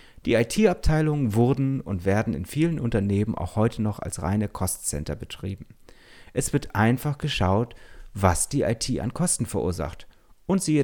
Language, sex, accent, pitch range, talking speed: German, male, German, 95-130 Hz, 150 wpm